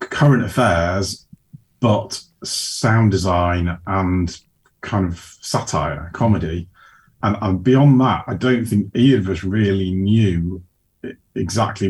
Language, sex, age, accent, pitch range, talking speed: English, male, 30-49, British, 90-105 Hz, 115 wpm